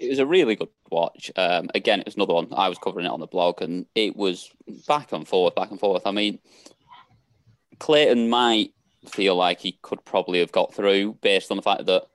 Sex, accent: male, British